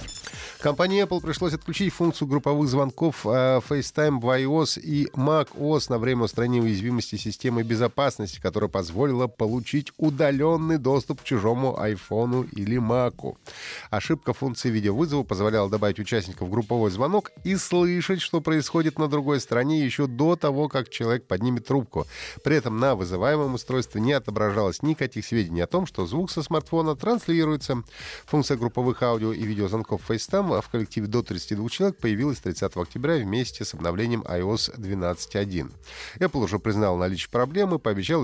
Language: Russian